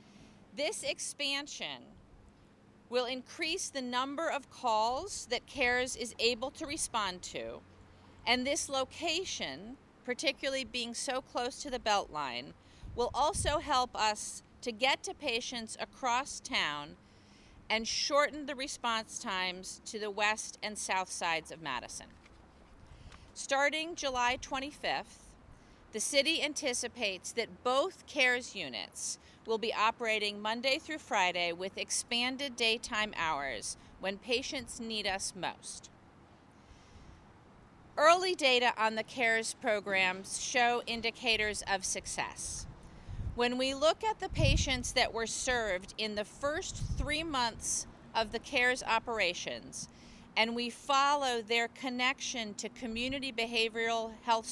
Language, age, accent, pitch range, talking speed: English, 40-59, American, 220-275 Hz, 120 wpm